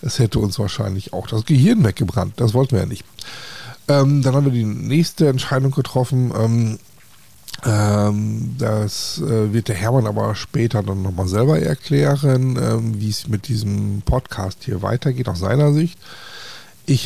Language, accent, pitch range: German, German, 105-130 Hz